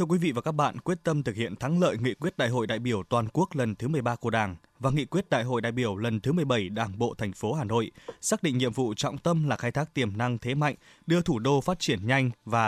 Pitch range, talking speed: 120-160 Hz, 290 wpm